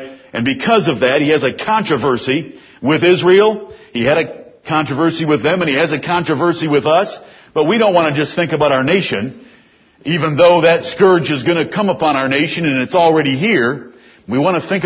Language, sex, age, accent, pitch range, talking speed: English, male, 60-79, American, 145-180 Hz, 210 wpm